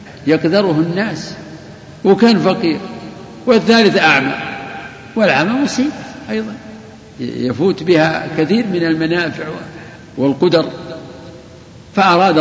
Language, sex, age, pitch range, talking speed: Arabic, male, 60-79, 145-185 Hz, 75 wpm